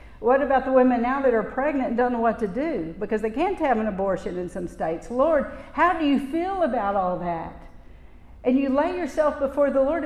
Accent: American